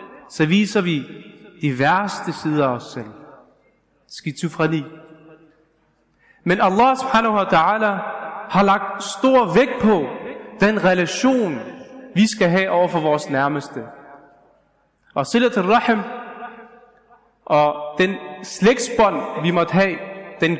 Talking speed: 115 wpm